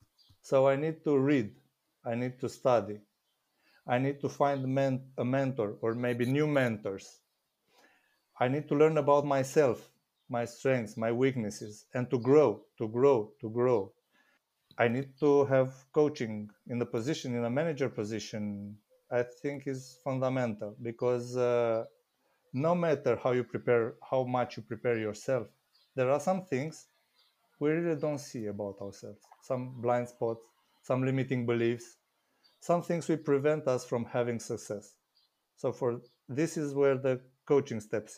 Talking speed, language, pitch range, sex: 150 wpm, English, 120-145 Hz, male